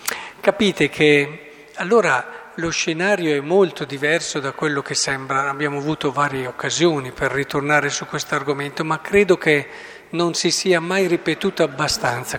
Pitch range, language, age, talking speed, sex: 150-205 Hz, Italian, 50-69, 145 wpm, male